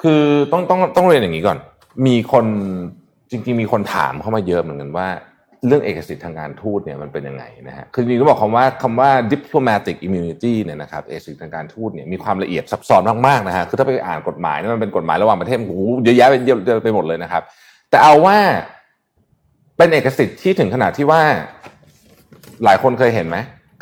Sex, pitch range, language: male, 100-155 Hz, Thai